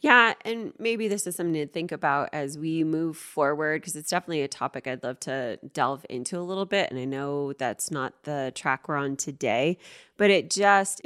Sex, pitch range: female, 160-190 Hz